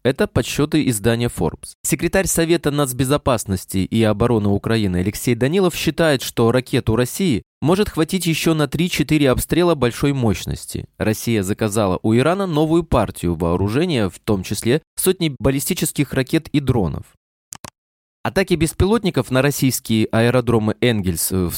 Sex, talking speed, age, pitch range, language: male, 130 wpm, 20-39, 100-150 Hz, Russian